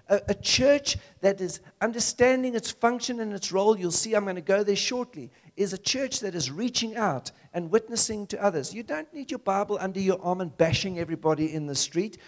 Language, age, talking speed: English, 50-69, 210 wpm